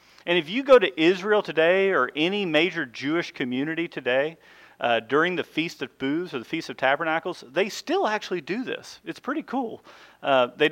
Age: 40-59